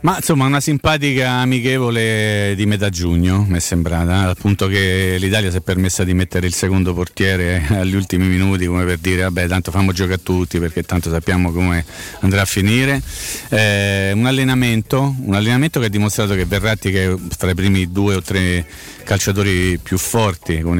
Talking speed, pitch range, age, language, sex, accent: 180 wpm, 90-110 Hz, 40-59, Italian, male, native